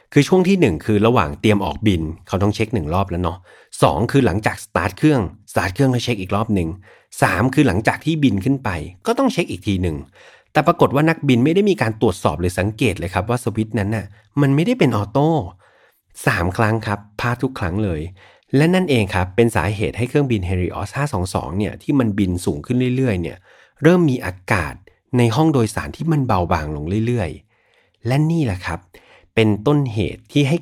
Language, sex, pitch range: Thai, male, 95-130 Hz